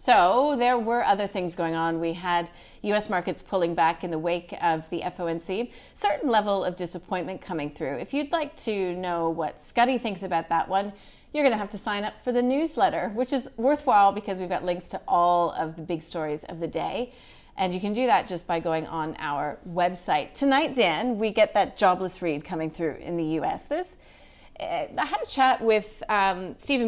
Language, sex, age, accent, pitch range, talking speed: English, female, 30-49, American, 170-230 Hz, 210 wpm